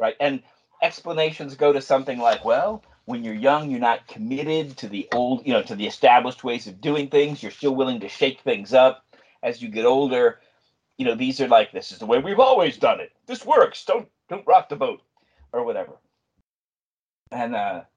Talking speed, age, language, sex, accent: 200 wpm, 40-59, English, male, American